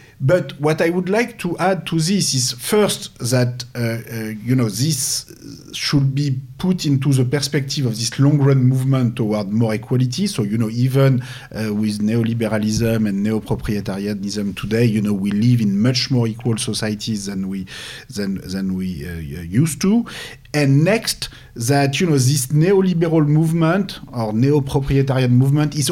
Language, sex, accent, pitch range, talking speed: Polish, male, French, 120-155 Hz, 160 wpm